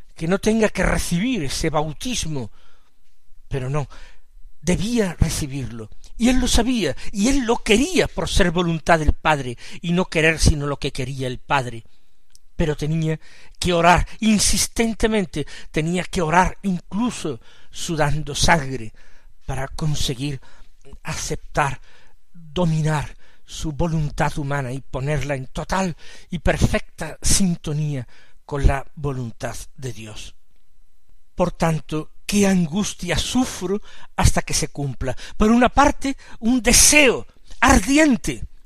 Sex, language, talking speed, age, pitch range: male, Spanish, 120 wpm, 50-69, 140-190 Hz